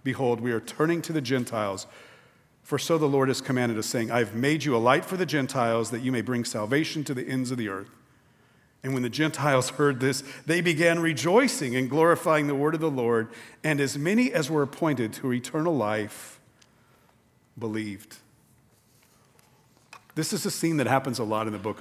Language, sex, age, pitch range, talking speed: English, male, 50-69, 120-150 Hz, 195 wpm